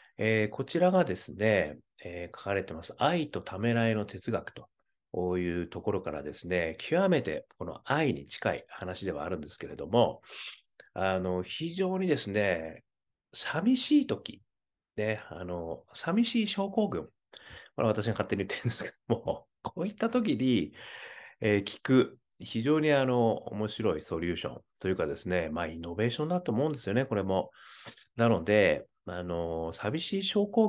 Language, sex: Japanese, male